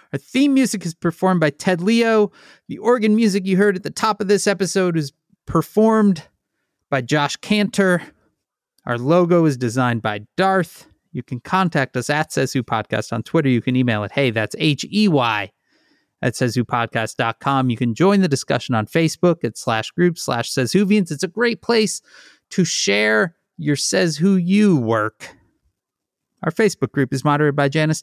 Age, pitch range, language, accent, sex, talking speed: 30-49, 125-190 Hz, English, American, male, 180 wpm